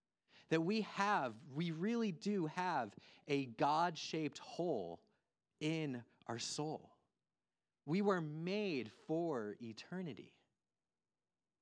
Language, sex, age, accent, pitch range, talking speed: English, male, 30-49, American, 140-205 Hz, 95 wpm